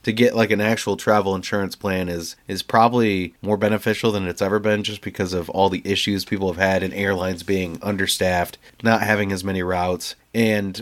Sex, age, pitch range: male, 30-49, 95-110 Hz